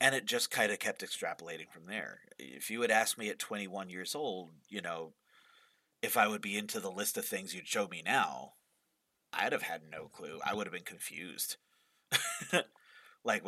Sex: male